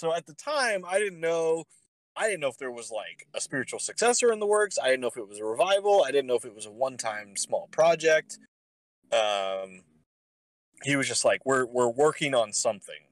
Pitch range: 100-145 Hz